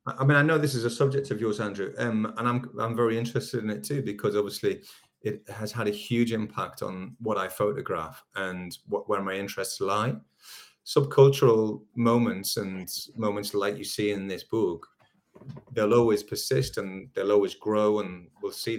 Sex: male